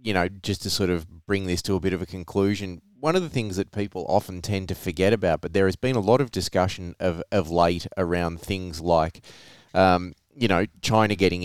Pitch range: 85-100 Hz